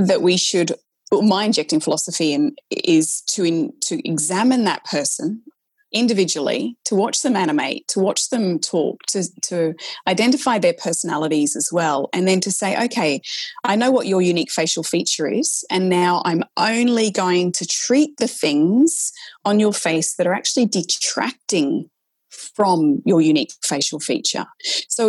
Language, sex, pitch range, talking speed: English, female, 170-250 Hz, 160 wpm